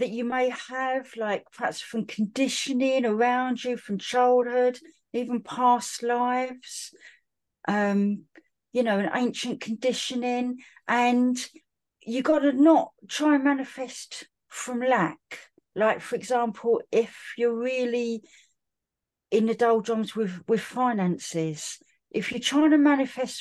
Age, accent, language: 40-59, British, English